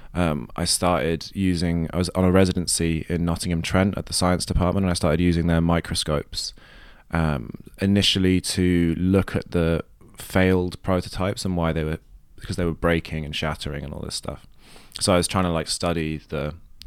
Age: 20-39